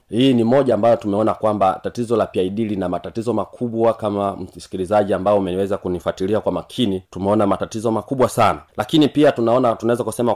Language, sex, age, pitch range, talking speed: Swahili, male, 30-49, 95-120 Hz, 160 wpm